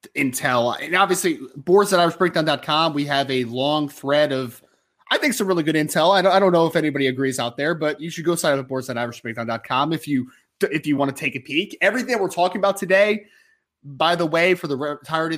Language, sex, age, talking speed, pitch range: English, male, 20-39, 240 wpm, 130-175 Hz